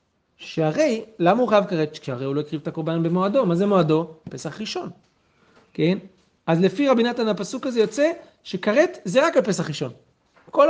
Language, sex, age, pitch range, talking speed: Hebrew, male, 40-59, 150-195 Hz, 180 wpm